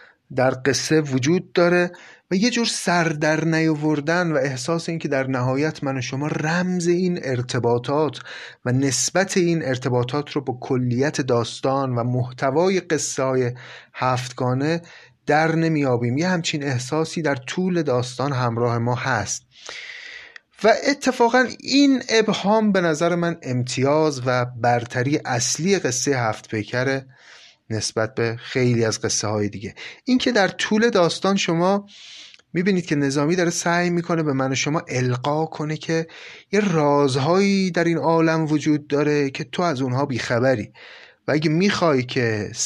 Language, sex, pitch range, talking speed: Persian, male, 125-175 Hz, 135 wpm